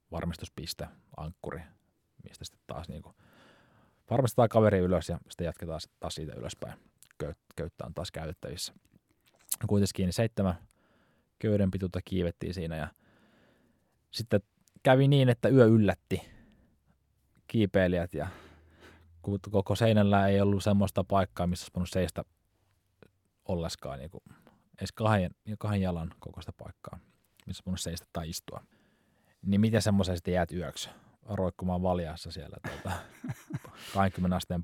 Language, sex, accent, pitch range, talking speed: Finnish, male, native, 90-105 Hz, 120 wpm